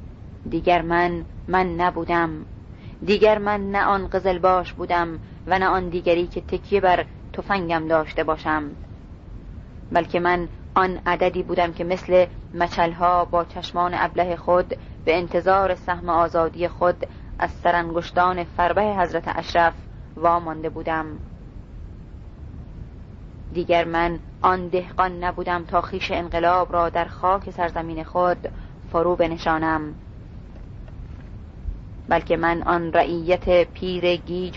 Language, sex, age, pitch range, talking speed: Persian, female, 30-49, 160-180 Hz, 115 wpm